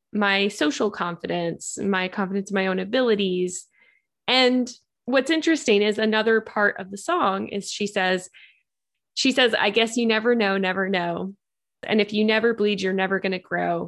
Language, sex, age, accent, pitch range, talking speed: English, female, 10-29, American, 190-230 Hz, 175 wpm